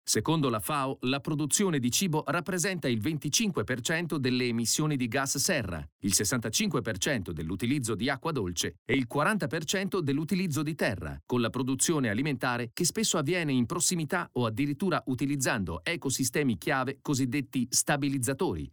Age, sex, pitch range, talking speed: 40-59, male, 120-155 Hz, 140 wpm